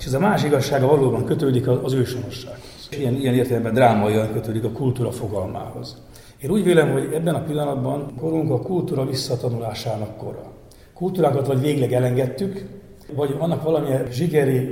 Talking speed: 155 wpm